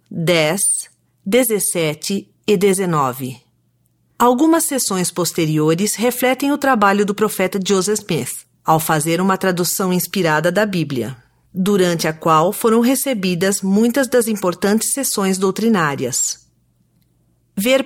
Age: 40-59